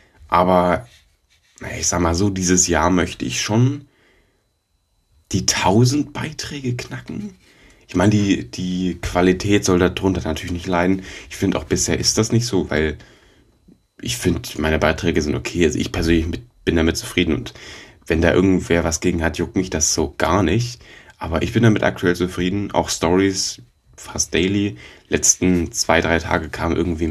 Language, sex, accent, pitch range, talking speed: German, male, German, 85-95 Hz, 165 wpm